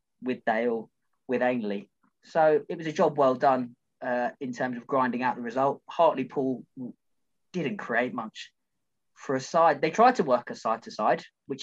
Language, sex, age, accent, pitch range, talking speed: English, male, 20-39, British, 120-180 Hz, 175 wpm